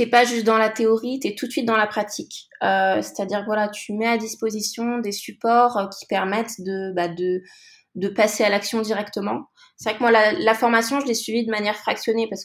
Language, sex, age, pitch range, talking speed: French, female, 20-39, 195-235 Hz, 240 wpm